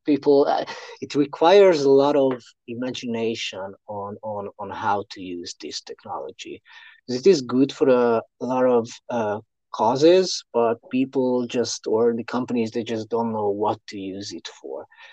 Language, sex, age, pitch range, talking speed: English, male, 30-49, 115-140 Hz, 160 wpm